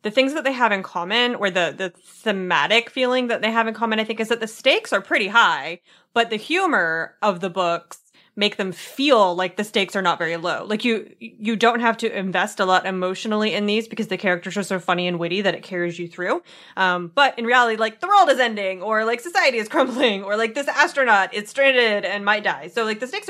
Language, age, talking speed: English, 20-39, 240 wpm